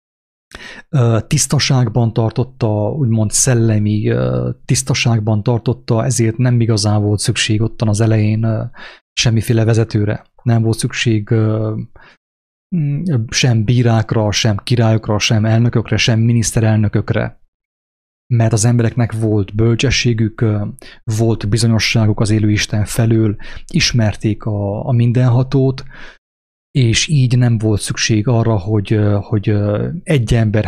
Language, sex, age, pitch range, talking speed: English, male, 30-49, 110-120 Hz, 100 wpm